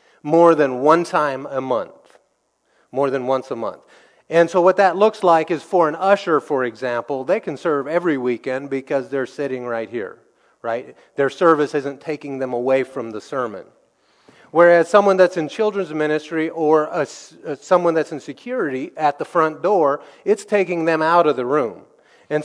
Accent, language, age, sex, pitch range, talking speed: American, English, 30-49, male, 140-180 Hz, 175 wpm